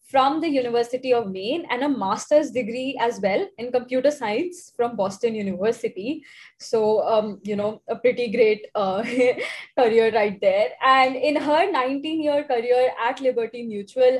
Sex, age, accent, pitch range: female, 20-39, Indian, 230-285 Hz